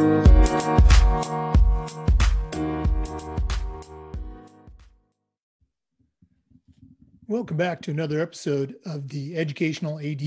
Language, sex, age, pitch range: English, male, 50-69, 140-180 Hz